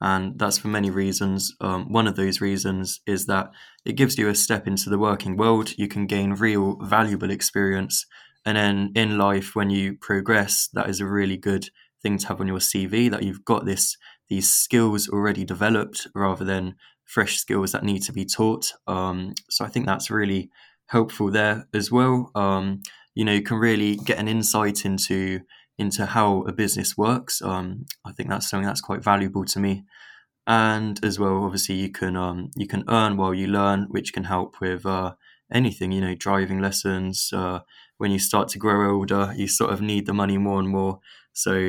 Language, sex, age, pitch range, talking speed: English, male, 20-39, 95-105 Hz, 195 wpm